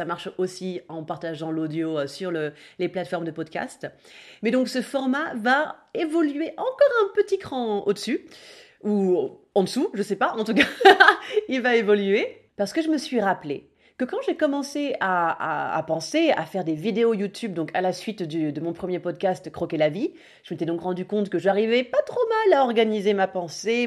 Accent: French